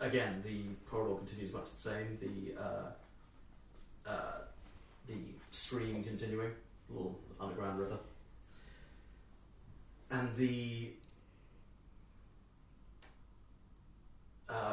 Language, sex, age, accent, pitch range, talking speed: English, male, 40-59, British, 95-115 Hz, 80 wpm